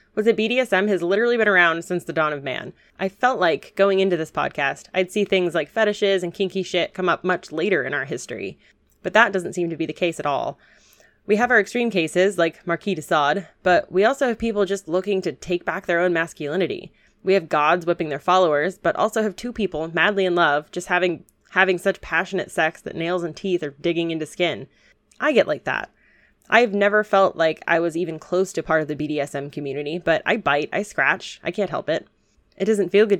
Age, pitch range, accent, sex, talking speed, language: 20-39, 165-200 Hz, American, female, 230 wpm, English